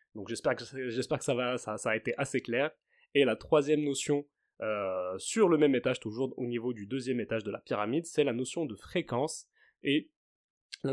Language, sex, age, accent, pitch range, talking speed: French, male, 20-39, French, 115-150 Hz, 200 wpm